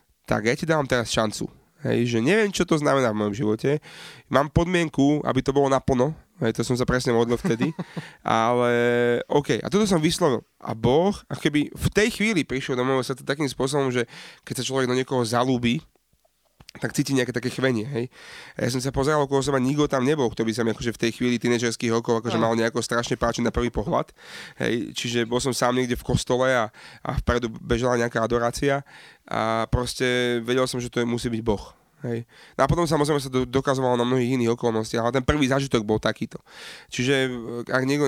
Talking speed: 210 wpm